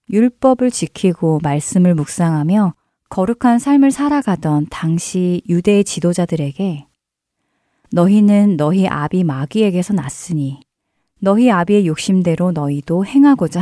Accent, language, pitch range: native, Korean, 155-225 Hz